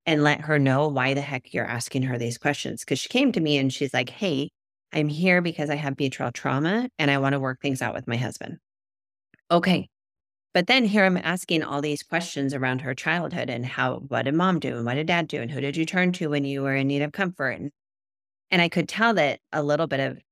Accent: American